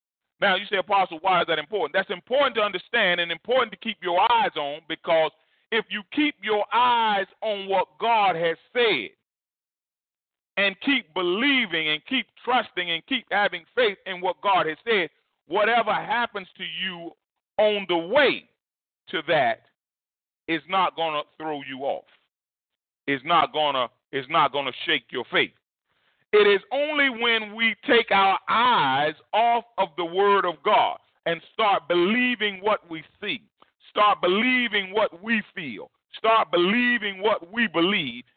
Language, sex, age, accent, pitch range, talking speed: English, male, 40-59, American, 165-225 Hz, 155 wpm